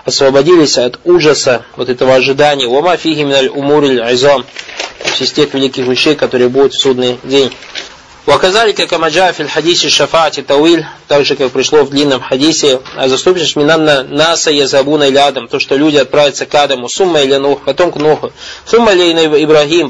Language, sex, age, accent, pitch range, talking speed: Russian, male, 20-39, native, 135-165 Hz, 145 wpm